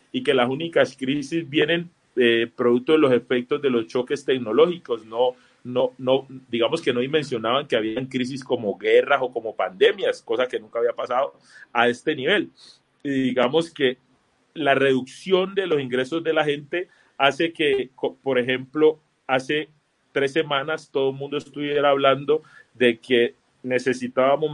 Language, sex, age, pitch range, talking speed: Spanish, male, 30-49, 115-145 Hz, 155 wpm